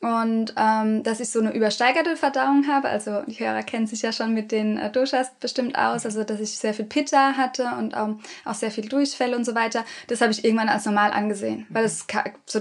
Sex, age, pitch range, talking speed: female, 20-39, 215-240 Hz, 230 wpm